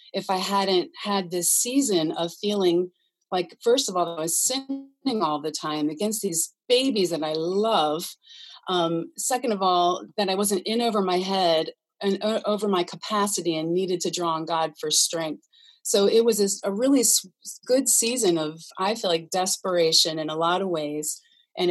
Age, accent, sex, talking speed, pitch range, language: 30-49, American, female, 185 wpm, 160-200 Hz, English